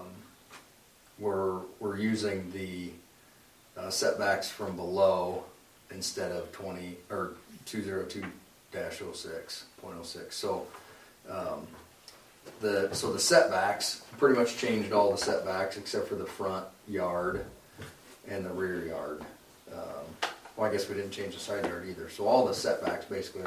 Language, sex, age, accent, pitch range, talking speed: English, male, 40-59, American, 100-115 Hz, 130 wpm